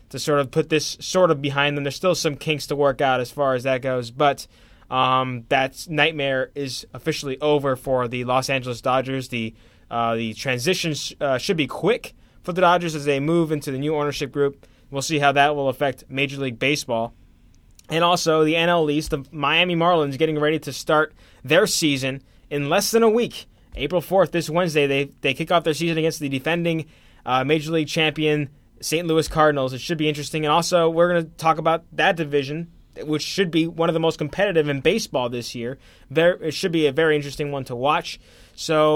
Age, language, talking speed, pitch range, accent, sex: 20-39, English, 210 wpm, 135-170 Hz, American, male